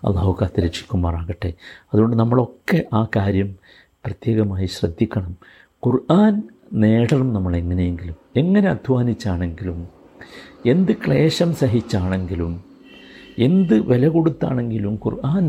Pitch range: 95-130 Hz